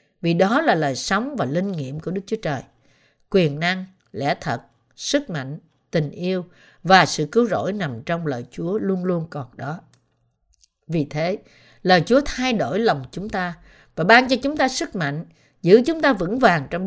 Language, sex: Vietnamese, female